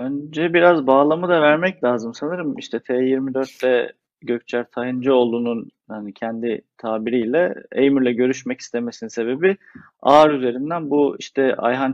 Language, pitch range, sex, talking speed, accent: Turkish, 115-145 Hz, male, 115 wpm, native